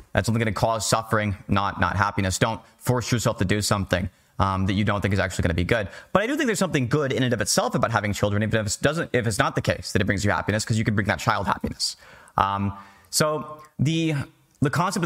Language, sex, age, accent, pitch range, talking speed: English, male, 30-49, American, 100-125 Hz, 265 wpm